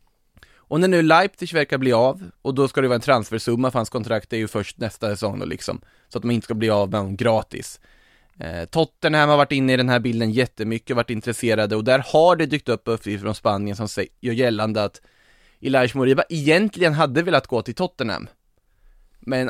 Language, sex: Swedish, male